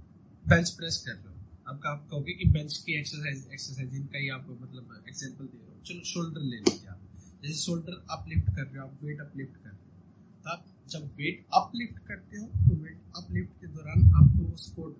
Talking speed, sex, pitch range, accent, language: 230 wpm, male, 95-160 Hz, native, Hindi